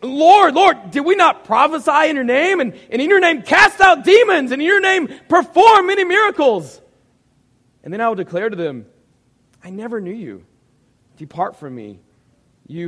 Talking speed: 180 wpm